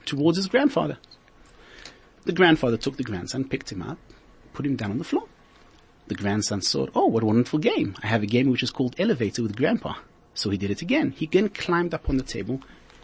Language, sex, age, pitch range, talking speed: Polish, male, 30-49, 115-165 Hz, 215 wpm